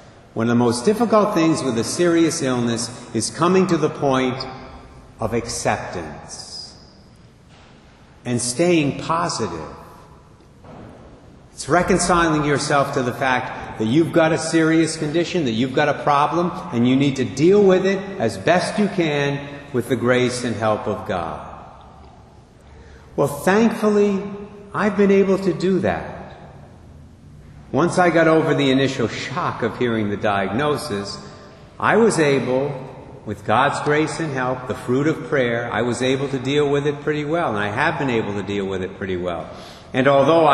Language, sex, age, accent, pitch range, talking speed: English, male, 50-69, American, 115-160 Hz, 160 wpm